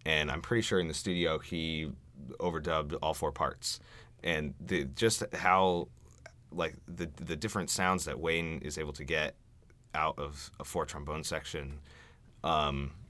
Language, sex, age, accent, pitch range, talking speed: English, male, 30-49, American, 70-85 Hz, 150 wpm